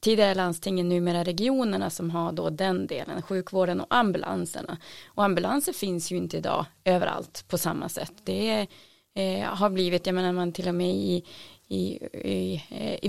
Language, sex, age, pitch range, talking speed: Swedish, female, 30-49, 175-210 Hz, 155 wpm